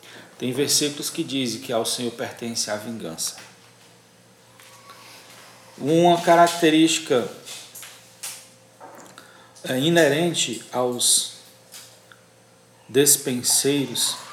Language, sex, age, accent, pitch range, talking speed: Portuguese, male, 40-59, Brazilian, 120-150 Hz, 65 wpm